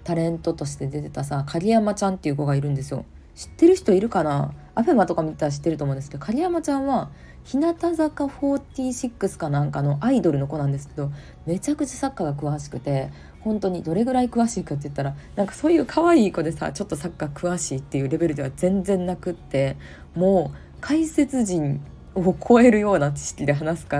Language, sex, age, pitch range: Japanese, female, 20-39, 140-190 Hz